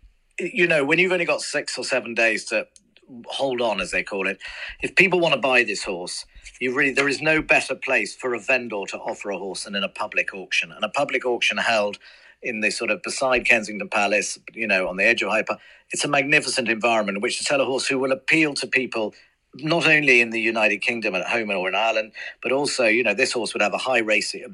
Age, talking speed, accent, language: 50-69, 245 wpm, British, English